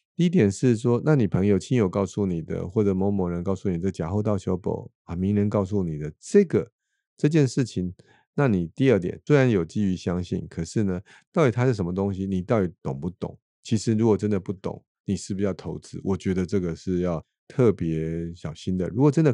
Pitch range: 90-110 Hz